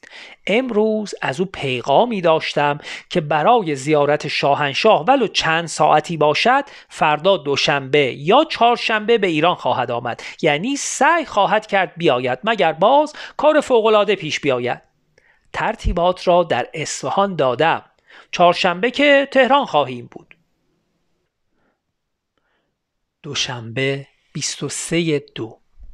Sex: male